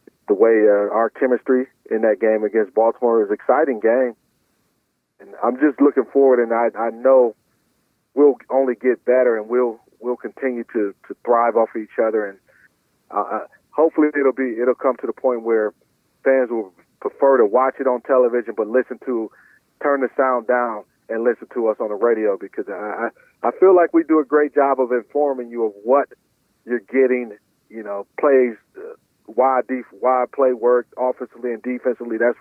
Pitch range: 115-130 Hz